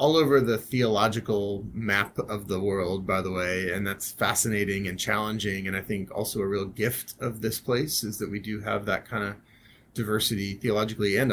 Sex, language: male, English